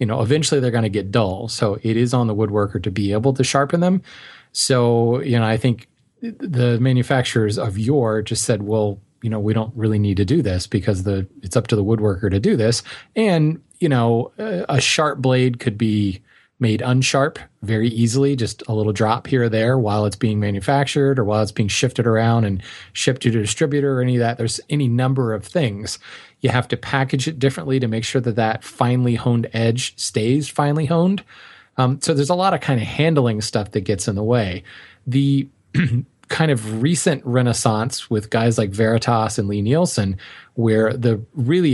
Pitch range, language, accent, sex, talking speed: 110-135 Hz, English, American, male, 205 wpm